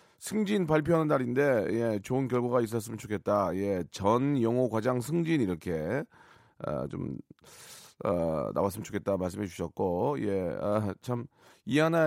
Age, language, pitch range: 40-59, Korean, 110-165 Hz